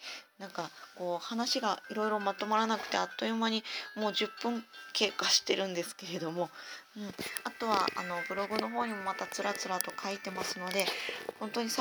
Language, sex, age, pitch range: Japanese, female, 20-39, 180-220 Hz